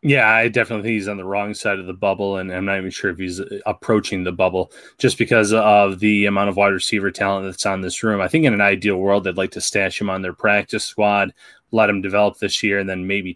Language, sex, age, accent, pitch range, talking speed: English, male, 20-39, American, 100-120 Hz, 260 wpm